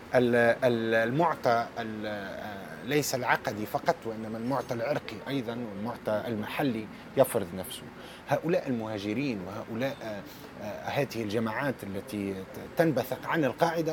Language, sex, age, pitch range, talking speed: Arabic, male, 30-49, 115-150 Hz, 90 wpm